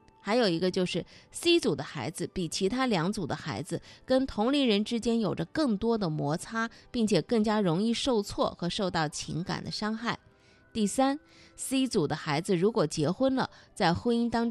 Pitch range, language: 160-230 Hz, Chinese